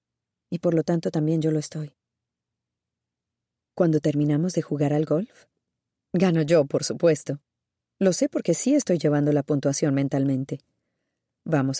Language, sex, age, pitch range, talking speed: Spanish, female, 30-49, 145-185 Hz, 140 wpm